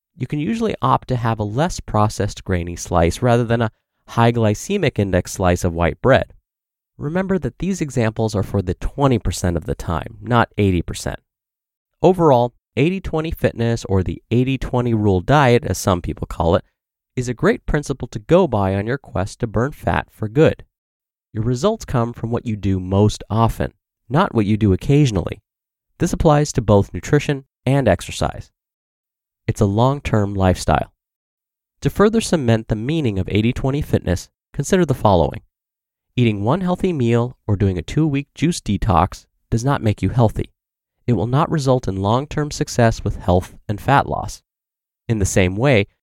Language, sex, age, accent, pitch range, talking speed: English, male, 30-49, American, 100-140 Hz, 170 wpm